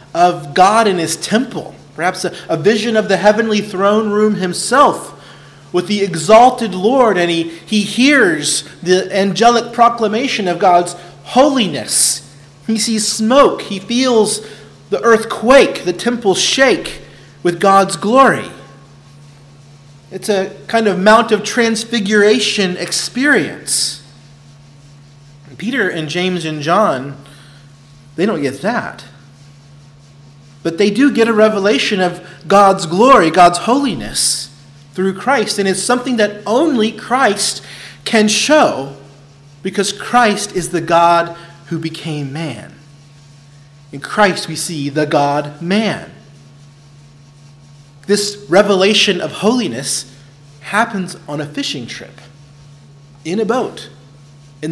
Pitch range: 145-215 Hz